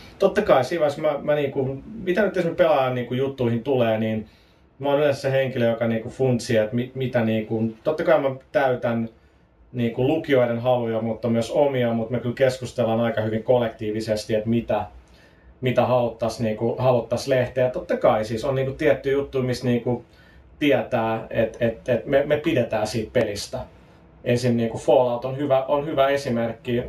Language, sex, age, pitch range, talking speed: Finnish, male, 30-49, 115-135 Hz, 170 wpm